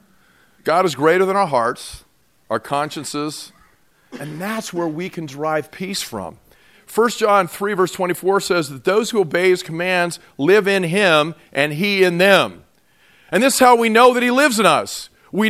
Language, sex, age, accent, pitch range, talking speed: English, male, 40-59, American, 180-265 Hz, 180 wpm